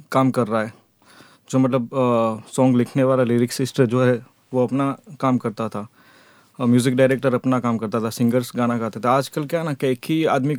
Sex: male